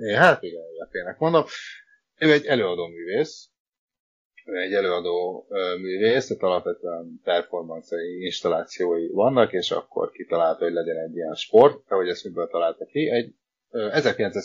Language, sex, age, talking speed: Hungarian, male, 30-49, 140 wpm